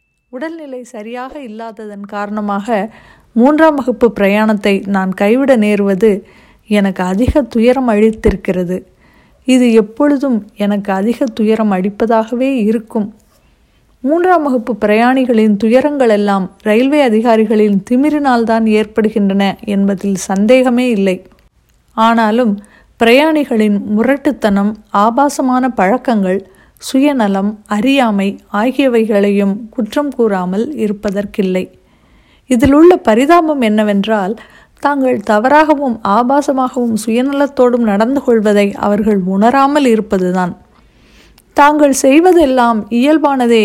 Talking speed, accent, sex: 80 wpm, native, female